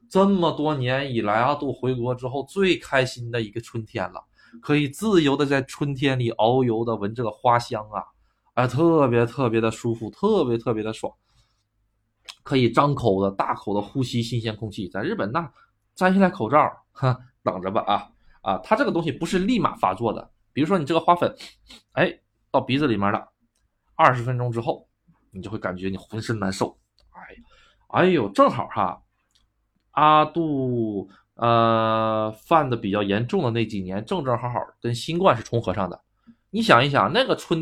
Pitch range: 110-150 Hz